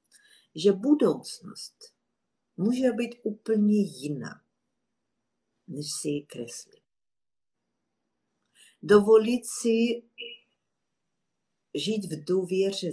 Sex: female